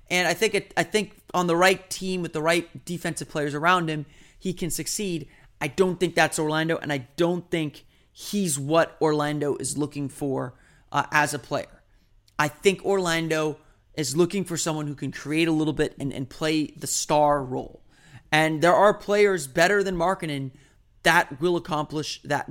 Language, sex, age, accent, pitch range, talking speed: English, male, 30-49, American, 140-170 Hz, 185 wpm